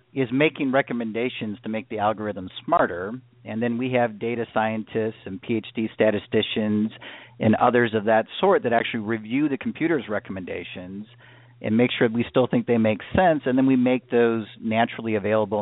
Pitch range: 110-130 Hz